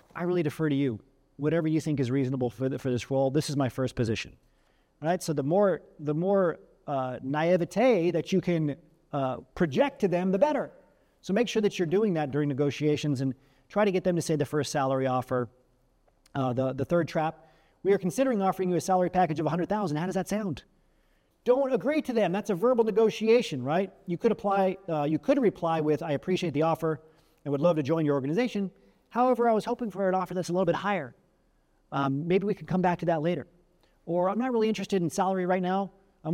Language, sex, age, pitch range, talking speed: English, male, 40-59, 140-190 Hz, 225 wpm